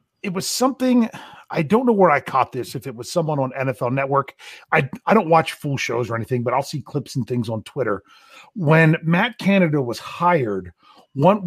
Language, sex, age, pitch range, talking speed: English, male, 40-59, 130-175 Hz, 205 wpm